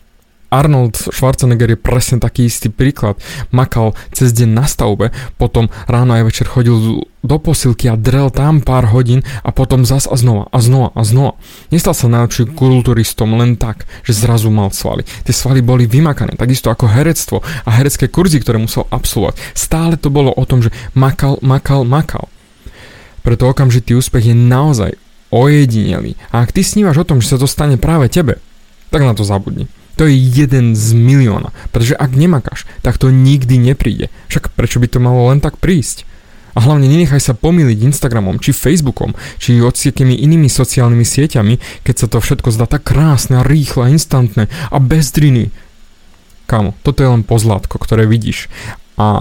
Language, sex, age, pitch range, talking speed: Slovak, male, 20-39, 115-135 Hz, 170 wpm